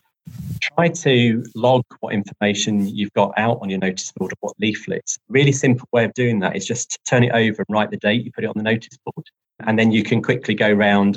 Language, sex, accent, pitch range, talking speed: English, male, British, 105-125 Hz, 245 wpm